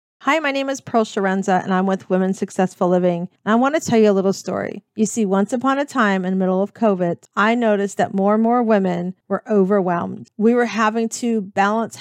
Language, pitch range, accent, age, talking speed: English, 200-245 Hz, American, 40-59, 225 wpm